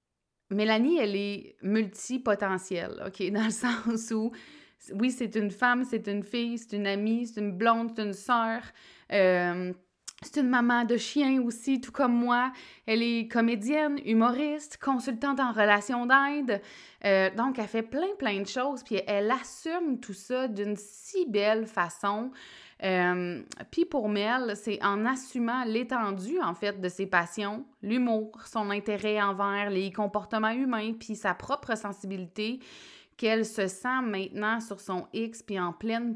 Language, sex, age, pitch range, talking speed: French, female, 20-39, 185-230 Hz, 160 wpm